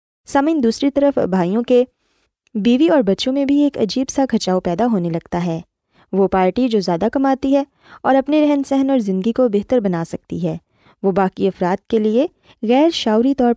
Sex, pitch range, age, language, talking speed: female, 190-265 Hz, 20-39, Urdu, 190 wpm